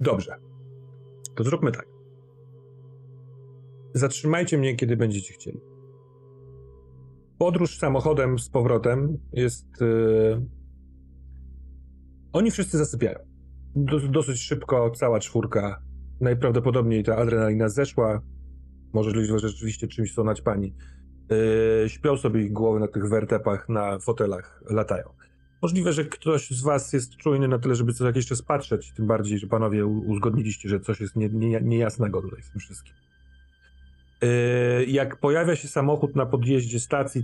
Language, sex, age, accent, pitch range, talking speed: Polish, male, 40-59, native, 105-130 Hz, 125 wpm